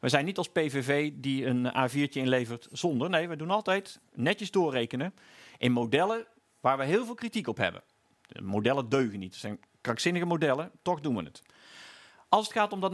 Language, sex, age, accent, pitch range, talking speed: Dutch, male, 50-69, Dutch, 145-210 Hz, 195 wpm